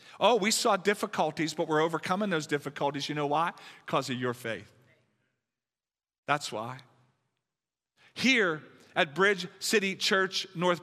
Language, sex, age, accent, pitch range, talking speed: English, male, 40-59, American, 165-195 Hz, 135 wpm